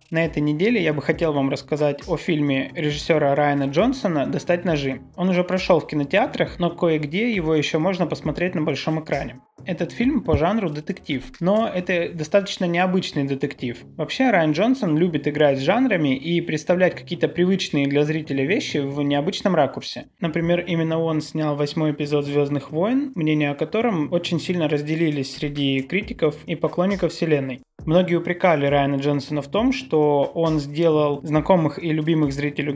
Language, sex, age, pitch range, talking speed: Russian, male, 20-39, 140-175 Hz, 160 wpm